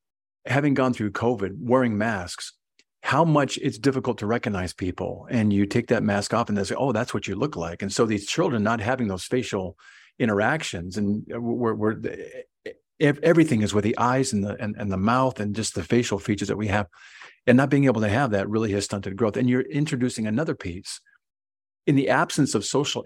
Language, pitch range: English, 105-130 Hz